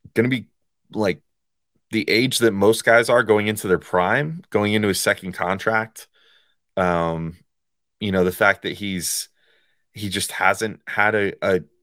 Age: 30-49